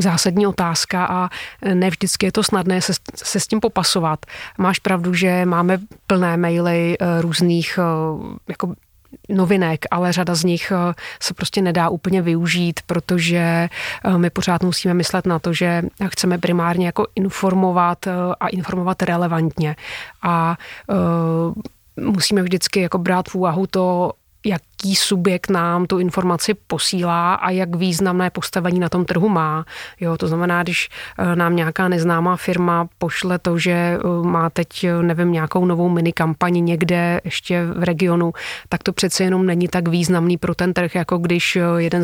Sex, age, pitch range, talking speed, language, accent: female, 30-49, 170-185 Hz, 145 wpm, Czech, native